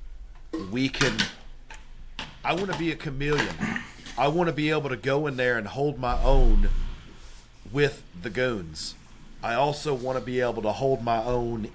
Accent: American